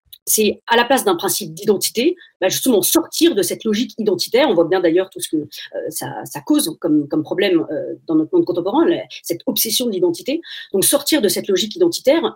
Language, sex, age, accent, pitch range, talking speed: French, female, 40-59, French, 190-315 Hz, 195 wpm